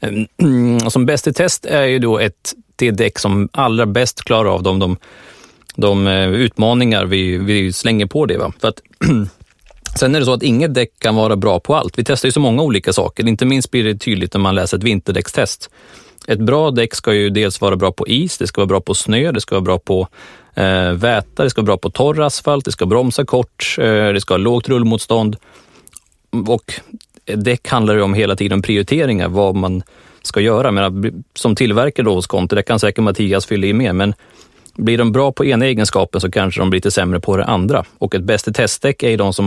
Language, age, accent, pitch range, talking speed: Swedish, 30-49, native, 95-120 Hz, 220 wpm